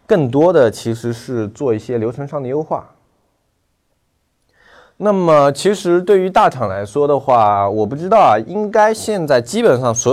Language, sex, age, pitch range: Chinese, male, 20-39, 110-145 Hz